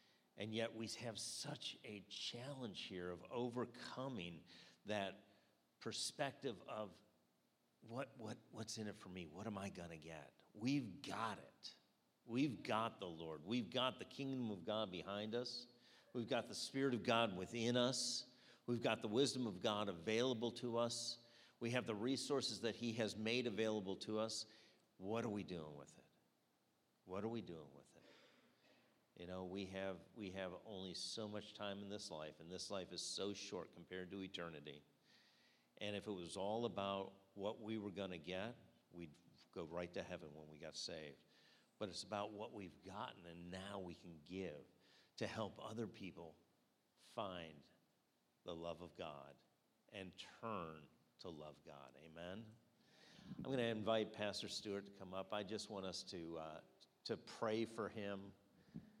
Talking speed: 170 wpm